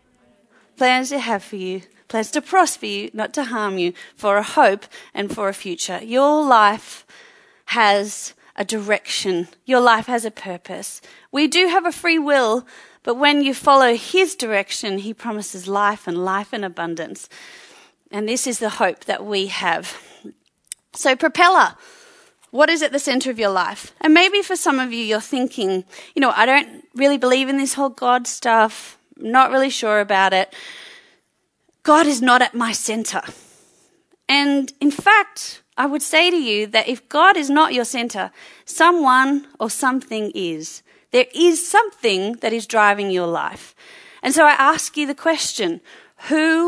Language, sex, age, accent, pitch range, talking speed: English, female, 30-49, Australian, 210-305 Hz, 170 wpm